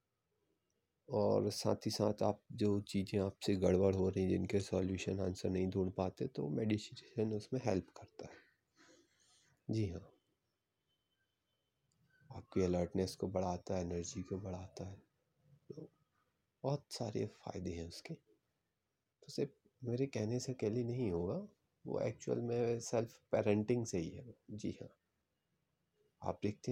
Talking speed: 135 wpm